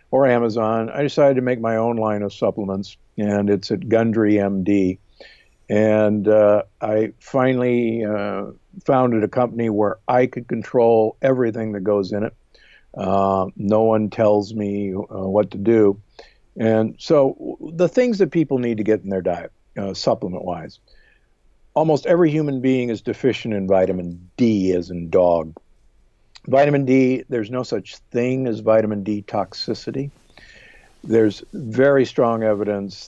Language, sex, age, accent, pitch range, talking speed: English, male, 50-69, American, 100-125 Hz, 150 wpm